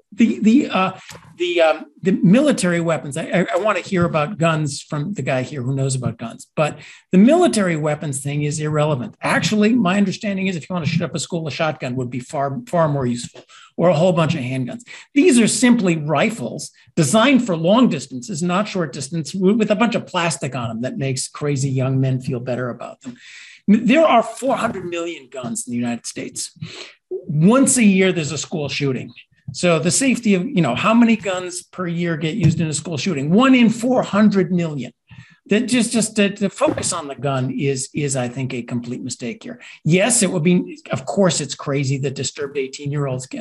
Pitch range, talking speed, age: 145-205 Hz, 205 wpm, 50-69